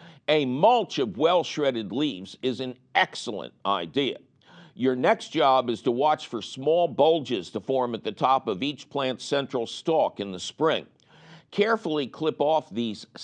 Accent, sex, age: American, male, 60-79